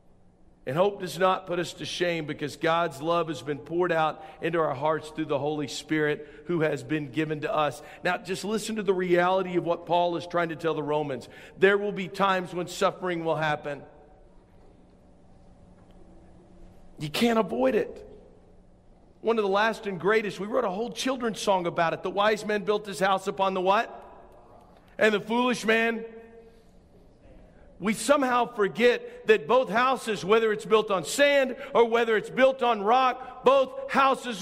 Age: 50-69